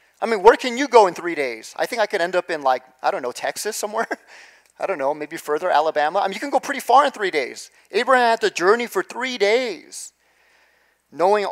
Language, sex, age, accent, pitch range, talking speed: English, male, 40-59, American, 160-235 Hz, 240 wpm